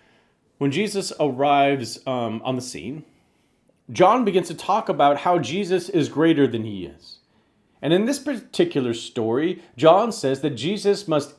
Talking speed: 155 wpm